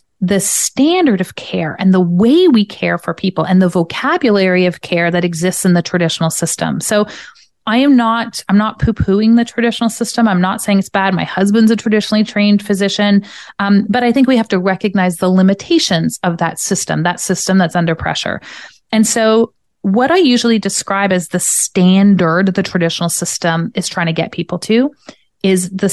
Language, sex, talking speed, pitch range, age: English, female, 185 wpm, 190-230 Hz, 30-49